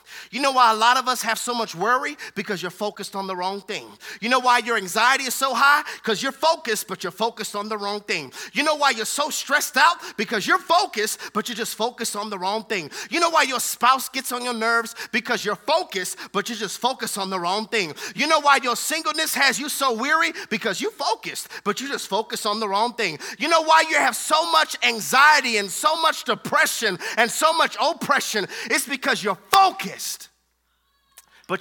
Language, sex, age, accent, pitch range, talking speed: English, male, 30-49, American, 215-270 Hz, 220 wpm